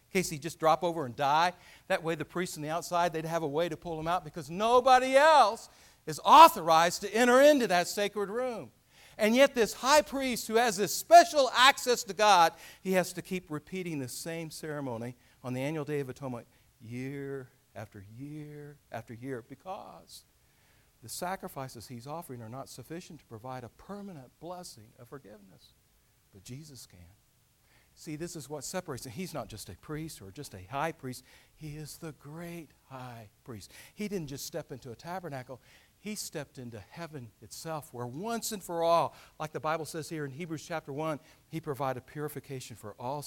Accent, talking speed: American, 190 wpm